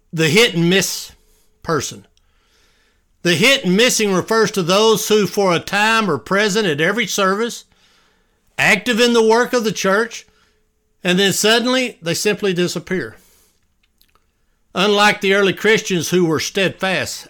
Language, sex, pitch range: English, male, 155-220 Hz